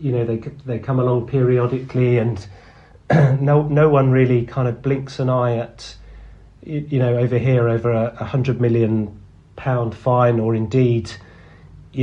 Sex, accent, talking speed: male, British, 155 wpm